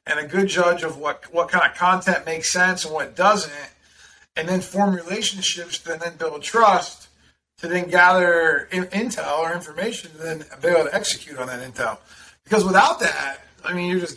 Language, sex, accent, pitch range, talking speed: English, male, American, 170-205 Hz, 190 wpm